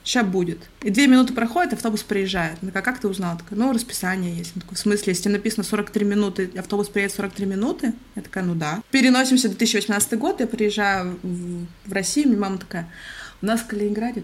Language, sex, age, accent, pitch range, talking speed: Russian, female, 20-39, native, 205-260 Hz, 200 wpm